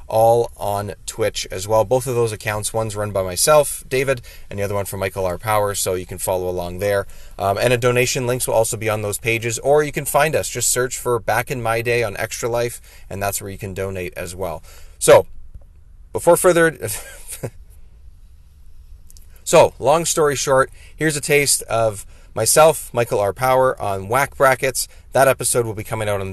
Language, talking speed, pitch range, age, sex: English, 200 wpm, 95-125 Hz, 30-49, male